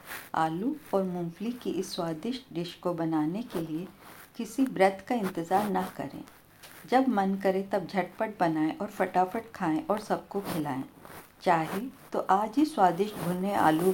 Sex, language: female, Hindi